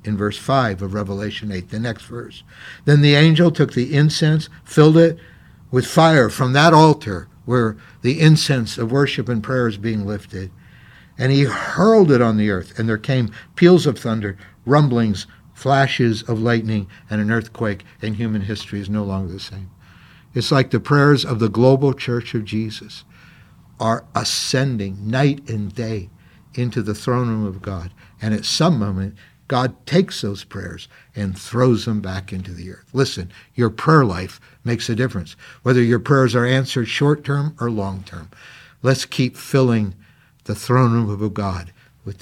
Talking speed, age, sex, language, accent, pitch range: 170 wpm, 60-79, male, English, American, 105-135 Hz